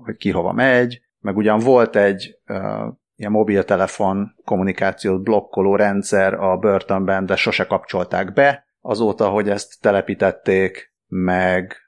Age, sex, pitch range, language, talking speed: 30-49, male, 95-110 Hz, Hungarian, 125 wpm